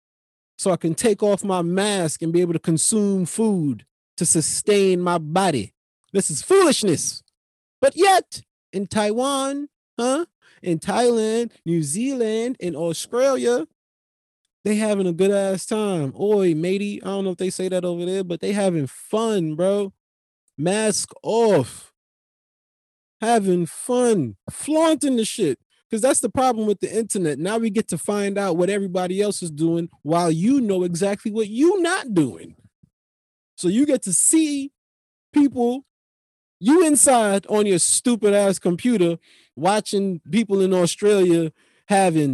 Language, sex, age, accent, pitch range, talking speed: English, male, 20-39, American, 170-230 Hz, 145 wpm